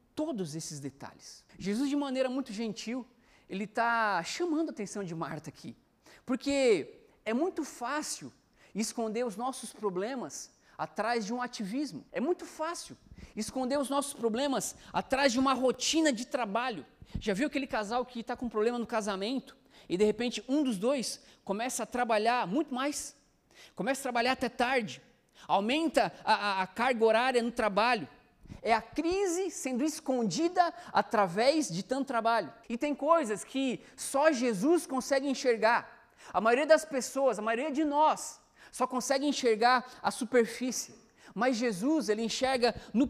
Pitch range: 225-280 Hz